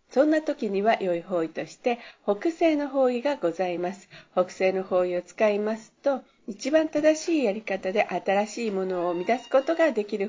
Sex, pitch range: female, 195-275 Hz